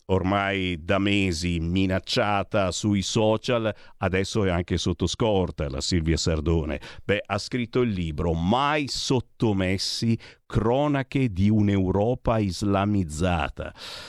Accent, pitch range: native, 90-125 Hz